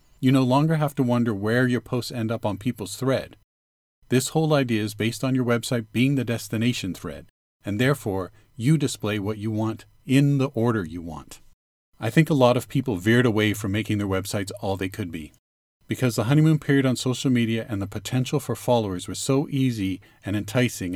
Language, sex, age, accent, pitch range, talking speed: English, male, 40-59, American, 105-130 Hz, 205 wpm